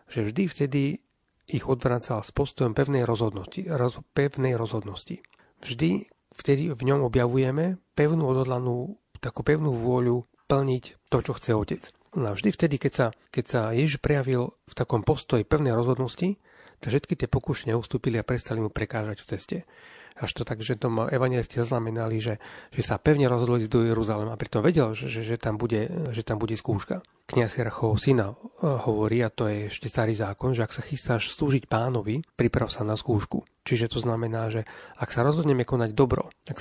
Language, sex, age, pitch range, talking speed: Slovak, male, 40-59, 115-140 Hz, 175 wpm